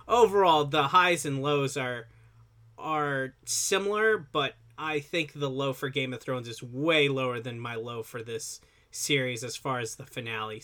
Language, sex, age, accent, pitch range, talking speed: English, male, 20-39, American, 130-170 Hz, 175 wpm